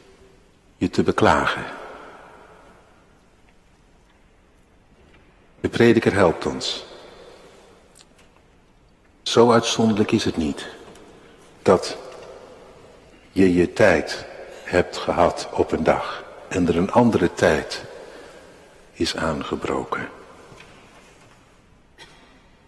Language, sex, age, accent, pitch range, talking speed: Dutch, male, 60-79, Dutch, 120-170 Hz, 75 wpm